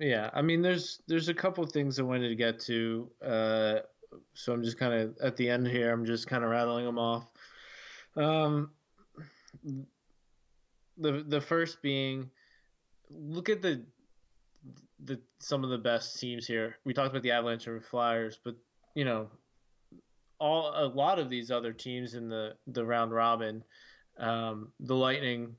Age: 20-39